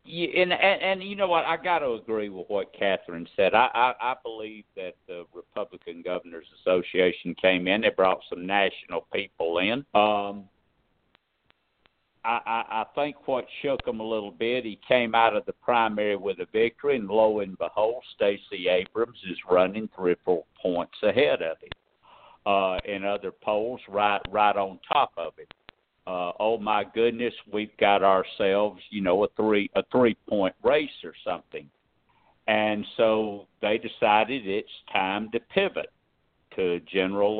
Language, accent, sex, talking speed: English, American, male, 165 wpm